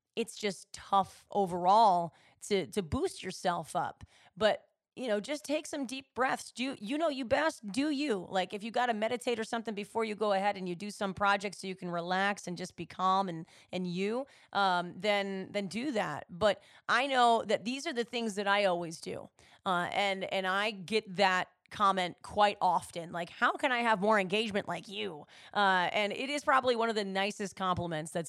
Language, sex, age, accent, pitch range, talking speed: English, female, 30-49, American, 185-240 Hz, 210 wpm